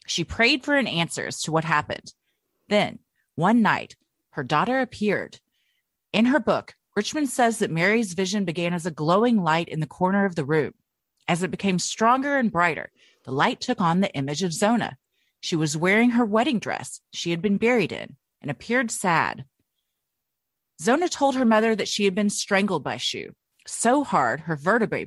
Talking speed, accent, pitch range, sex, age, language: 185 wpm, American, 170-240 Hz, female, 30-49, English